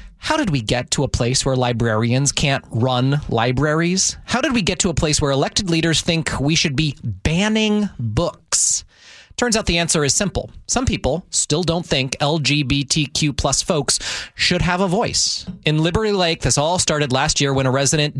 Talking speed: 190 wpm